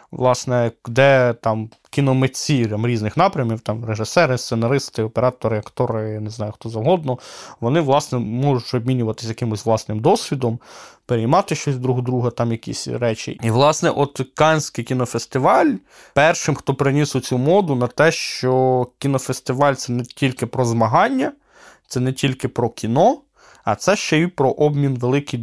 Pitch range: 120-145 Hz